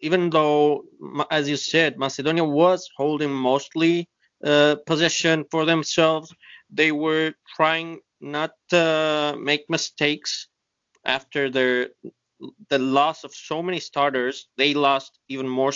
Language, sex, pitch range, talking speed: English, male, 140-170 Hz, 120 wpm